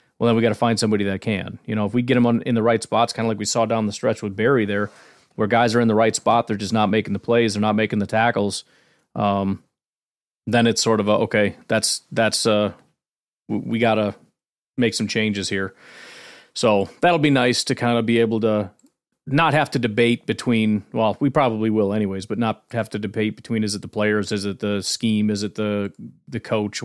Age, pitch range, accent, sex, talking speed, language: 30-49, 105-125 Hz, American, male, 235 wpm, English